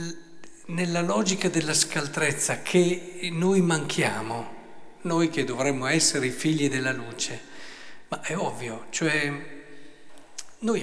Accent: native